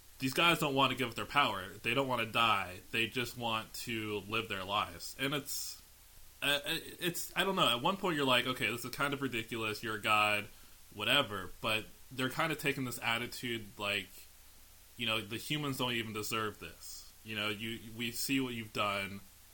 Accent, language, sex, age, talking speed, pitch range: American, English, male, 20-39, 205 wpm, 95-120 Hz